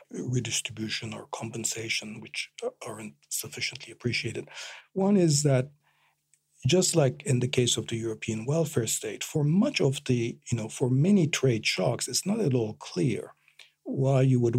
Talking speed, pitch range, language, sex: 155 wpm, 115-150 Hz, English, male